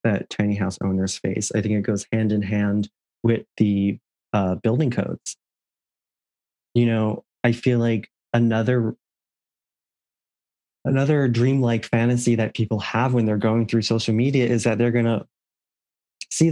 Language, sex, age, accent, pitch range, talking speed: English, male, 20-39, American, 100-120 Hz, 150 wpm